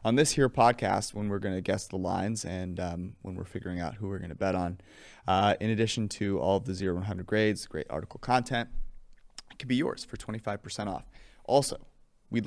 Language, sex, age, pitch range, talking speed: English, male, 30-49, 95-120 Hz, 200 wpm